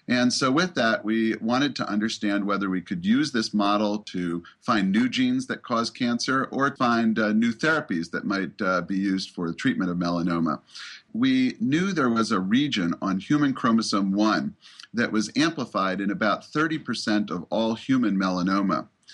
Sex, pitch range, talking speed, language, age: male, 105-160 Hz, 175 wpm, English, 40-59